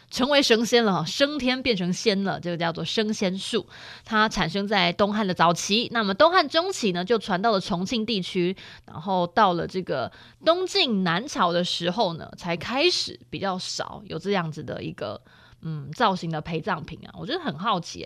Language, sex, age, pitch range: Chinese, female, 20-39, 175-235 Hz